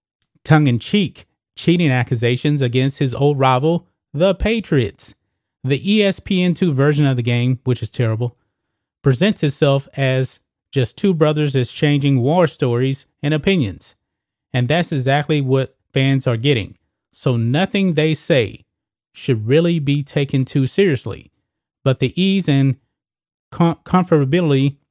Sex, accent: male, American